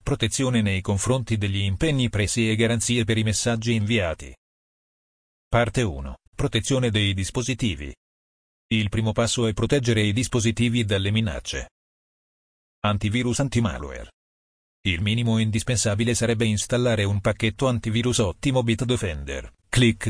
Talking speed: 115 wpm